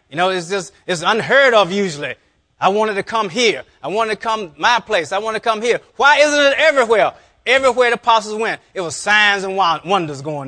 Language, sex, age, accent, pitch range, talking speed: English, male, 30-49, American, 145-225 Hz, 220 wpm